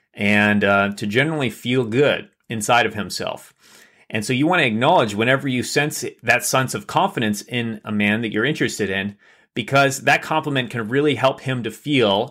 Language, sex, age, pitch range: English, male, 30-49, 105-130 Hz